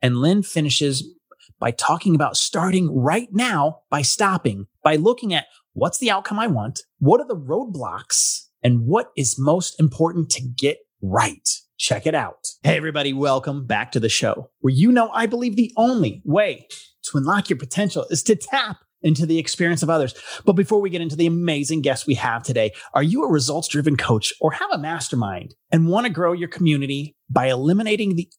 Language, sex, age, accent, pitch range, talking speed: English, male, 30-49, American, 135-195 Hz, 190 wpm